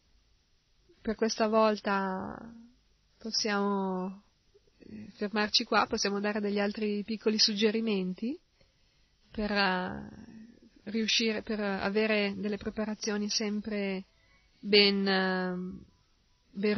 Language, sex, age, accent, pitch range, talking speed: Italian, female, 20-39, native, 195-220 Hz, 70 wpm